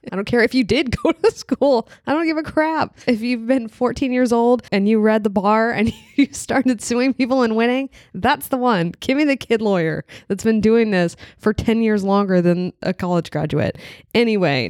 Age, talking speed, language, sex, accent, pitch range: 20-39, 215 wpm, English, female, American, 165-220 Hz